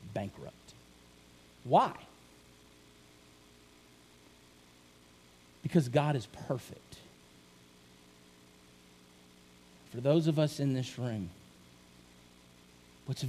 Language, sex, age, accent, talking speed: English, male, 50-69, American, 65 wpm